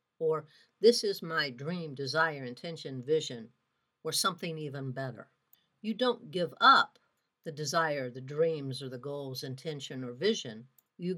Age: 60-79